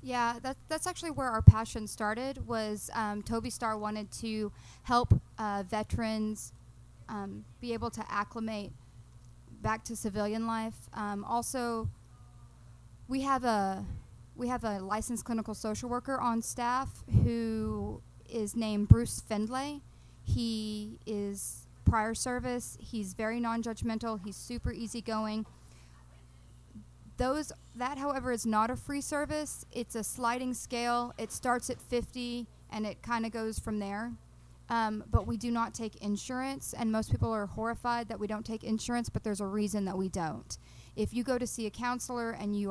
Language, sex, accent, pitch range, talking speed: English, female, American, 200-240 Hz, 155 wpm